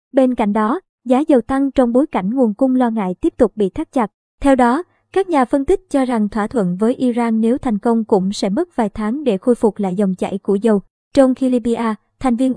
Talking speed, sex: 245 wpm, male